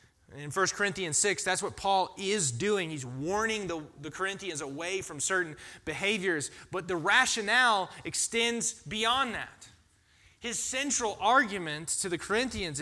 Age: 30-49